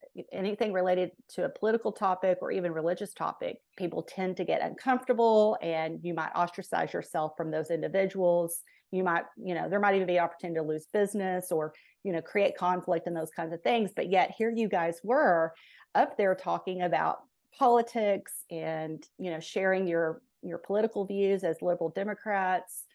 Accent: American